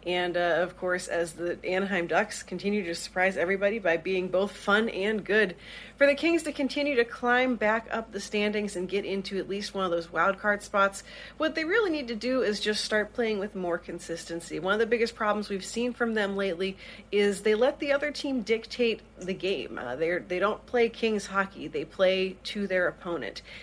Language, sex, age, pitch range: English, female, 40-59, 185-225 Hz